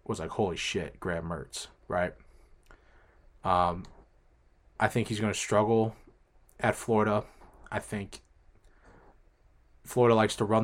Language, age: English, 20-39